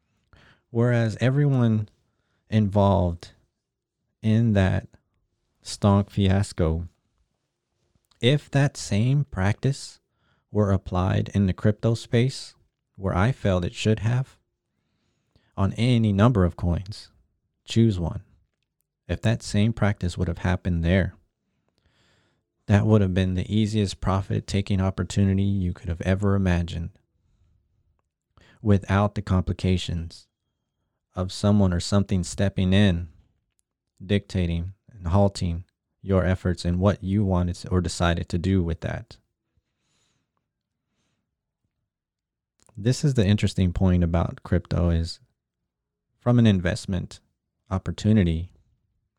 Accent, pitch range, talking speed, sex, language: American, 90-110 Hz, 105 wpm, male, English